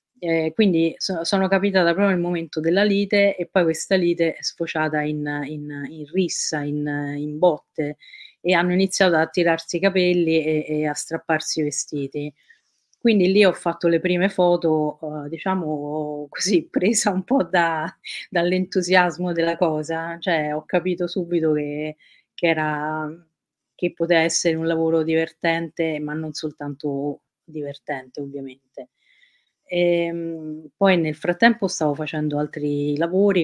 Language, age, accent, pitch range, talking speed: Italian, 30-49, native, 150-180 Hz, 135 wpm